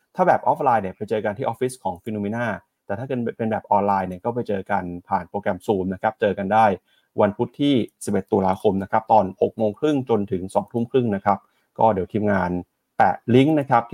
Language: Thai